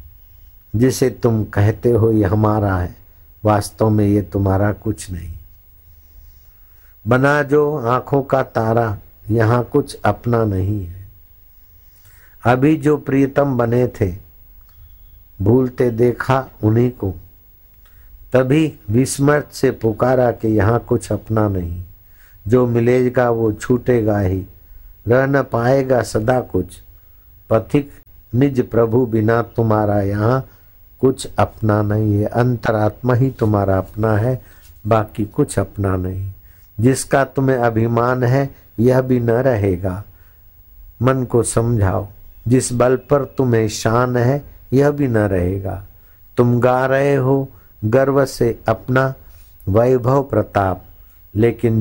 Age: 60-79